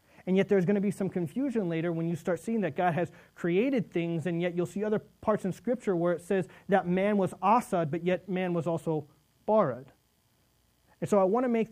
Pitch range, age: 170-205 Hz, 30-49